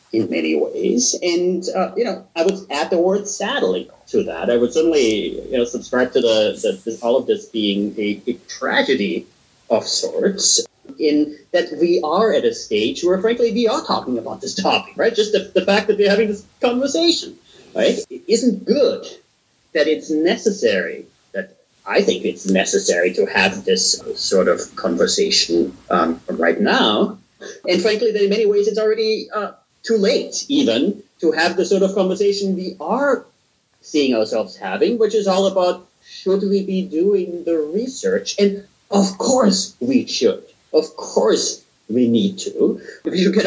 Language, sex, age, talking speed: English, male, 40-59, 175 wpm